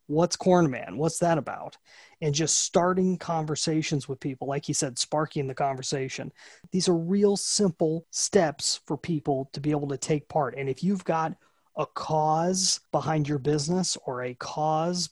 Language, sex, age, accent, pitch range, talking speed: English, male, 30-49, American, 145-180 Hz, 170 wpm